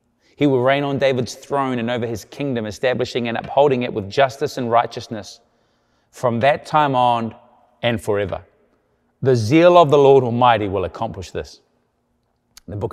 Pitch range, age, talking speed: 105-125 Hz, 30-49, 160 wpm